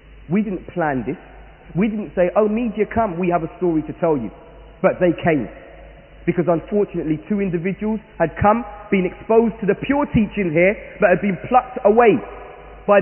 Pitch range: 155-215 Hz